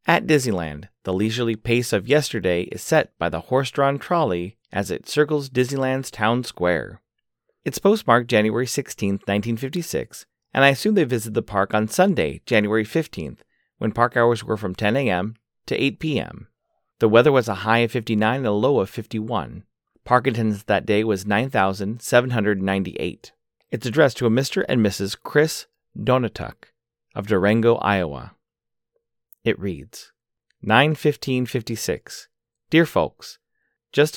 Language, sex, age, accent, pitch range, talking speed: English, male, 30-49, American, 105-130 Hz, 140 wpm